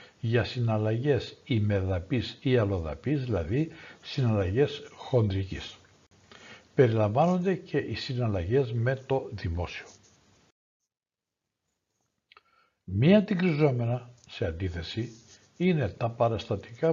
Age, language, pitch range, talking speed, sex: 60-79, Greek, 105-145 Hz, 80 wpm, male